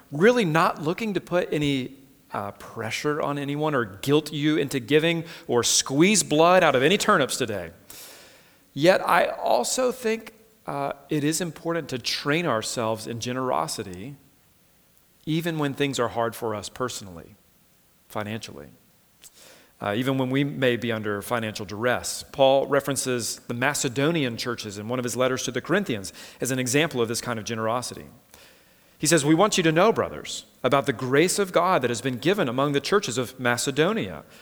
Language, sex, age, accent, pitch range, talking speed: English, male, 40-59, American, 115-160 Hz, 170 wpm